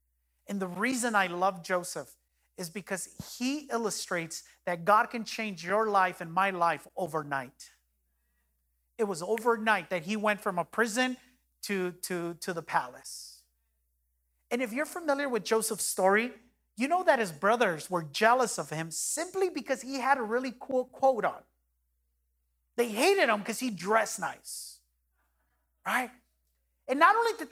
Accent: American